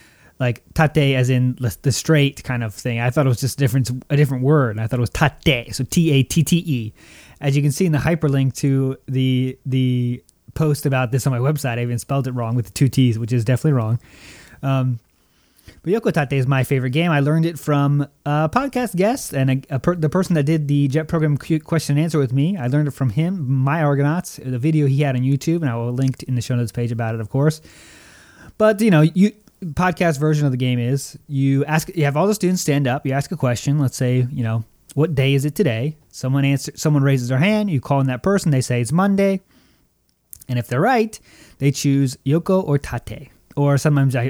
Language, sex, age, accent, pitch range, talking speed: English, male, 20-39, American, 125-155 Hz, 230 wpm